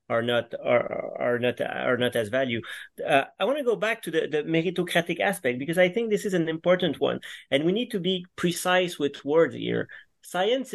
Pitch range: 130-175 Hz